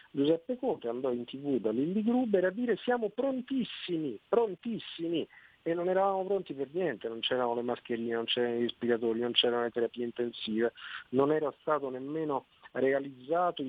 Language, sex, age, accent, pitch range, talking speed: Italian, male, 50-69, native, 120-160 Hz, 160 wpm